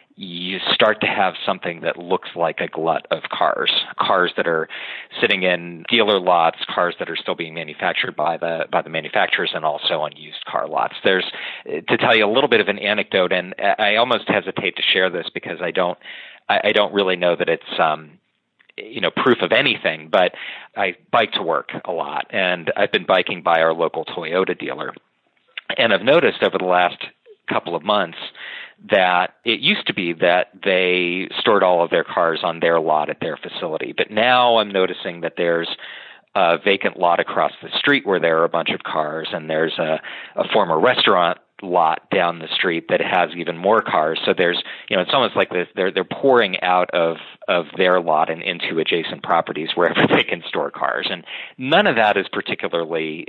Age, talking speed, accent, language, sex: 40-59, 195 wpm, American, English, male